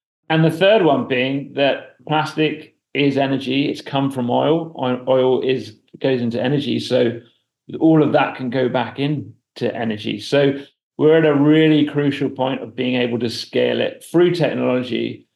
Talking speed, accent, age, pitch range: 165 wpm, British, 30-49, 120-145 Hz